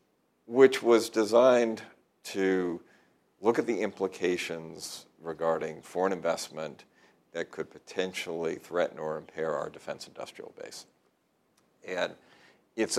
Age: 50-69